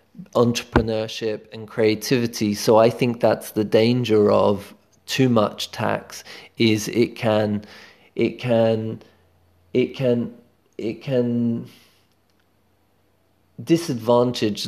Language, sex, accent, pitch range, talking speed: English, male, British, 110-120 Hz, 95 wpm